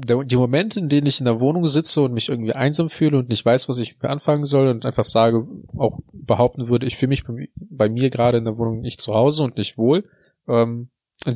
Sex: male